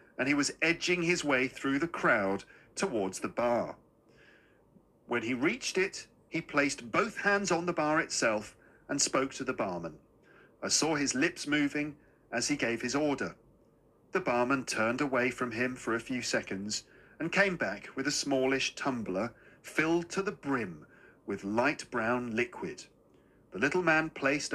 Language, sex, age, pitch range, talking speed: Persian, male, 40-59, 120-175 Hz, 165 wpm